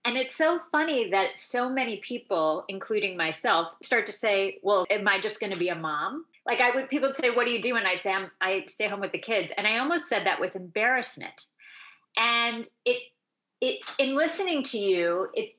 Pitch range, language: 190-255 Hz, English